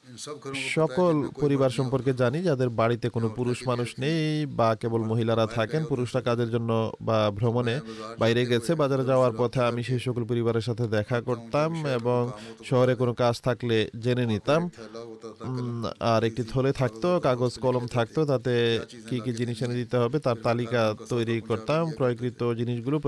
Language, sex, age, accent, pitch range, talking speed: Bengali, male, 30-49, native, 115-135 Hz, 30 wpm